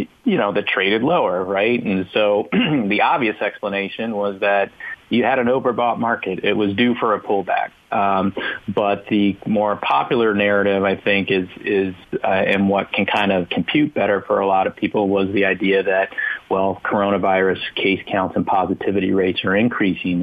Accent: American